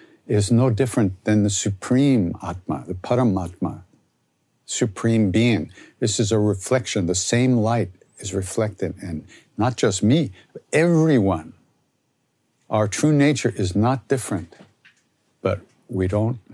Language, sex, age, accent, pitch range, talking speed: English, male, 60-79, American, 100-120 Hz, 125 wpm